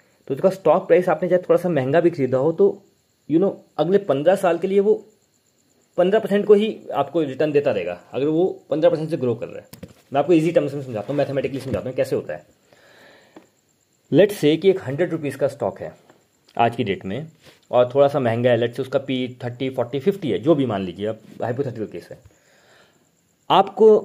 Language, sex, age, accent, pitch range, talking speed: Hindi, male, 30-49, native, 125-175 Hz, 220 wpm